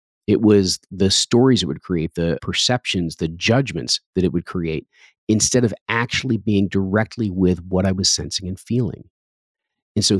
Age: 40-59